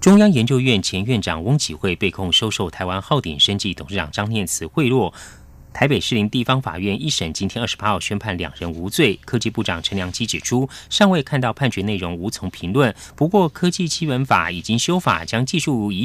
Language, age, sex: Chinese, 30-49, male